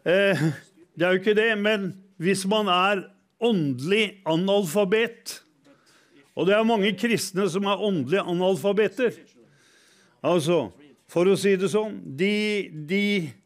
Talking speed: 145 wpm